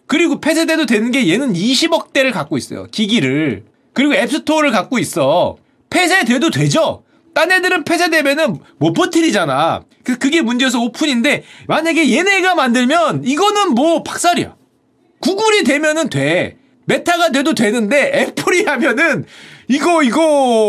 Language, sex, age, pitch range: Korean, male, 30-49, 215-305 Hz